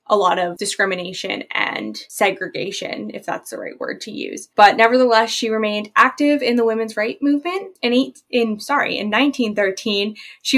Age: 10-29